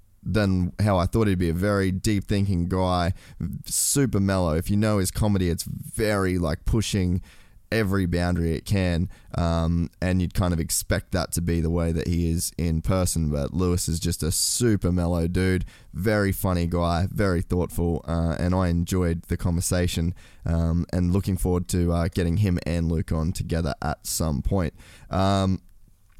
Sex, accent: male, Australian